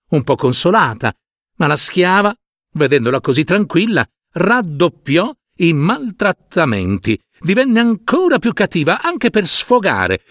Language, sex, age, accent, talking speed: Italian, male, 60-79, native, 110 wpm